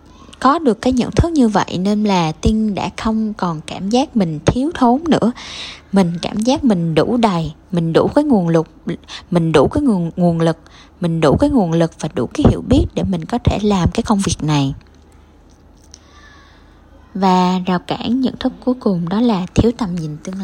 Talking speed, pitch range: 200 wpm, 165-230 Hz